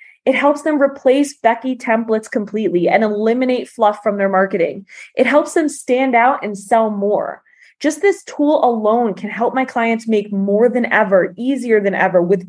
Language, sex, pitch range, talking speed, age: English, female, 215-295 Hz, 180 wpm, 20-39